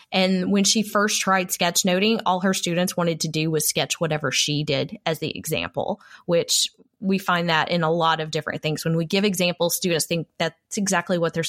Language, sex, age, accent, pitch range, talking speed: English, female, 20-39, American, 170-215 Hz, 215 wpm